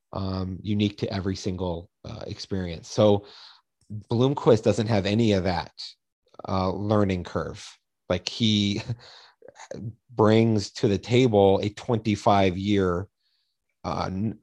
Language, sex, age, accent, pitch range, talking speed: English, male, 30-49, American, 95-105 Hz, 110 wpm